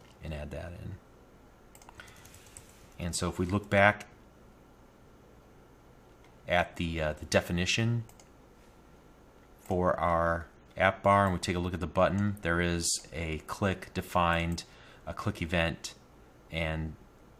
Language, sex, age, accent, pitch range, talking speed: English, male, 30-49, American, 85-105 Hz, 125 wpm